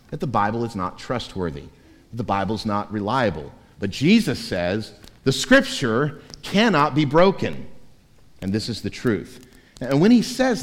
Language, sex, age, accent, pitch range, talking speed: English, male, 50-69, American, 120-185 Hz, 160 wpm